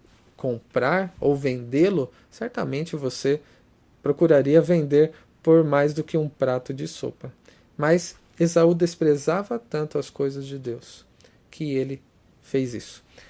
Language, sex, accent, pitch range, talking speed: Portuguese, male, Brazilian, 130-170 Hz, 120 wpm